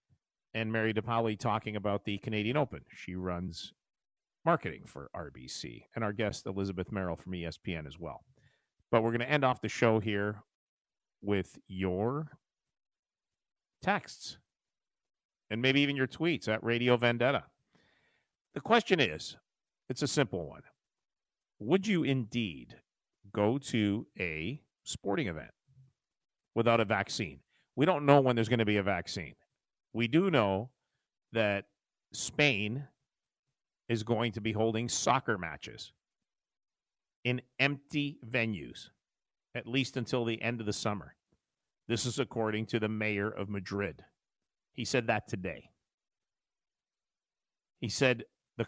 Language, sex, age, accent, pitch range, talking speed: English, male, 40-59, American, 105-130 Hz, 135 wpm